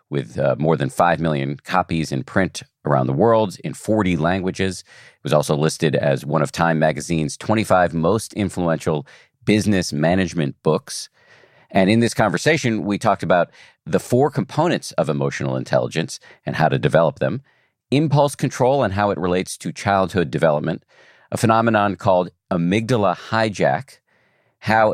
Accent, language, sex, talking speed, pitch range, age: American, English, male, 150 wpm, 80-105 Hz, 50-69